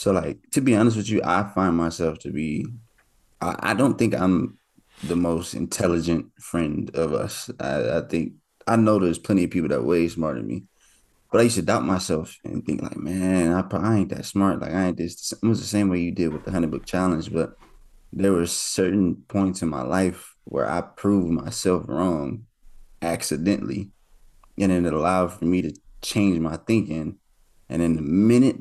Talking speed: 200 wpm